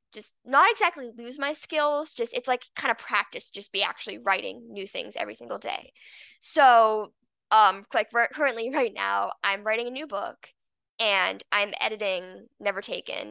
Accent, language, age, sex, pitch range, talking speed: American, English, 10-29, female, 205-310 Hz, 170 wpm